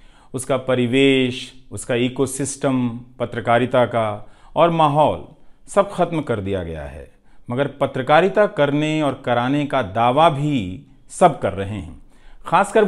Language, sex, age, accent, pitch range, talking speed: Hindi, male, 50-69, native, 115-150 Hz, 125 wpm